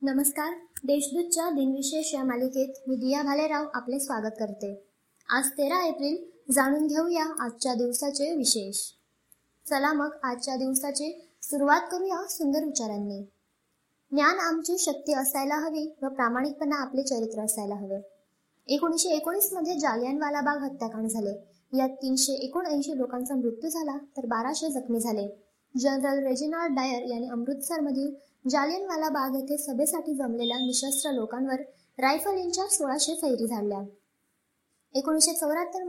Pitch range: 250-310 Hz